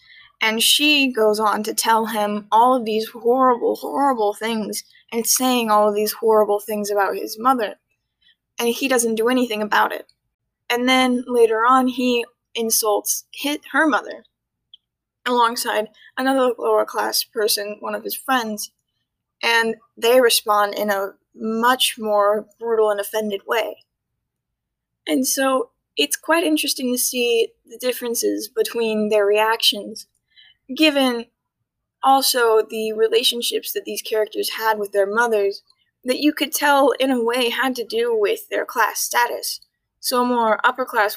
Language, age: English, 10-29